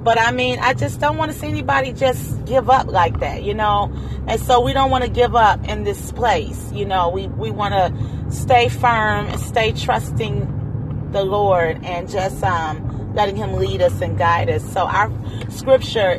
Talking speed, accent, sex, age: 200 wpm, American, female, 30-49